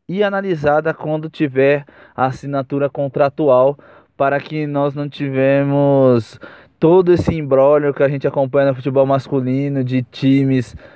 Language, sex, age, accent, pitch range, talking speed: Portuguese, male, 20-39, Brazilian, 130-145 Hz, 125 wpm